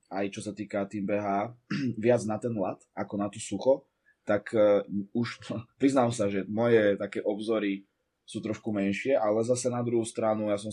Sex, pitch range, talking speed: male, 100-115 Hz, 185 wpm